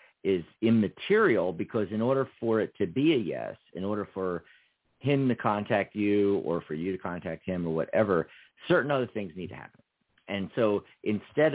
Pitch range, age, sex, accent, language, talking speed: 95-120 Hz, 50-69, male, American, English, 180 wpm